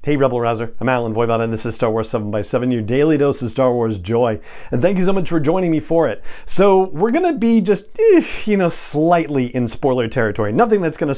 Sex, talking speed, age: male, 230 wpm, 40-59